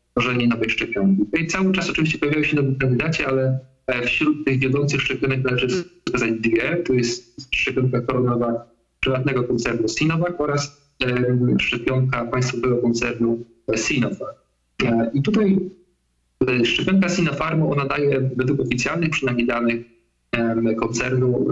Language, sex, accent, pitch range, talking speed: Polish, male, native, 120-145 Hz, 115 wpm